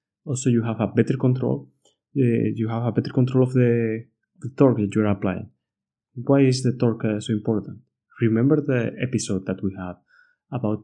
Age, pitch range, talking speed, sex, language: 20-39, 105-125 Hz, 185 wpm, male, English